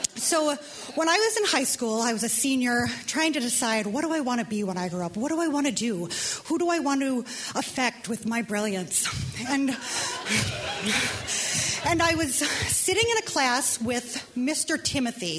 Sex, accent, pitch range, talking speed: female, American, 230-310 Hz, 195 wpm